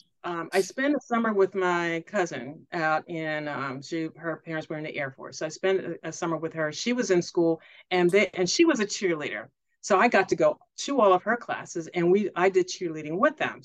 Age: 50-69